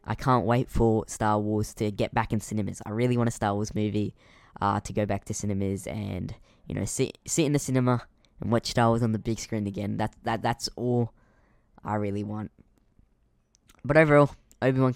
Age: 10-29